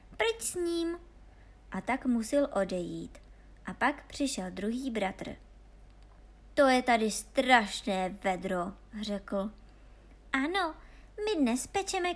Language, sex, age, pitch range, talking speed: Czech, male, 20-39, 200-305 Hz, 110 wpm